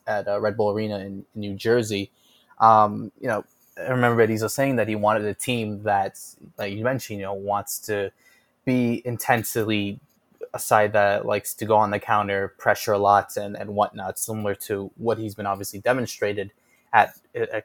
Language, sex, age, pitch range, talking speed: English, male, 20-39, 105-125 Hz, 185 wpm